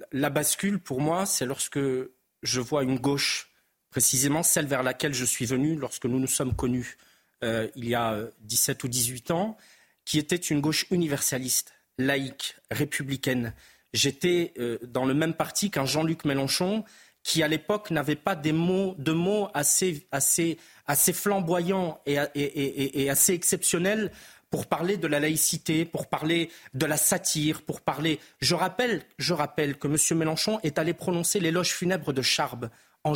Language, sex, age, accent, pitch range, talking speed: French, male, 40-59, French, 140-175 Hz, 170 wpm